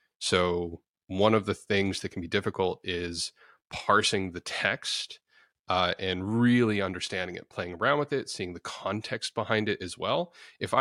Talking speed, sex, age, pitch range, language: 165 wpm, male, 30-49, 90-110 Hz, English